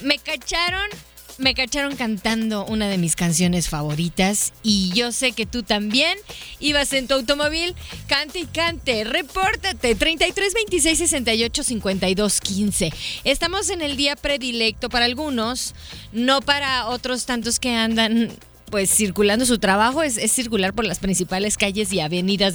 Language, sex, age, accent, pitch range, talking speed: Spanish, female, 30-49, Mexican, 200-285 Hz, 135 wpm